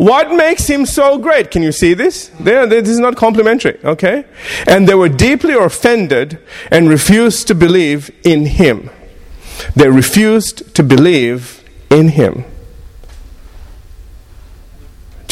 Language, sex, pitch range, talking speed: English, male, 105-160 Hz, 130 wpm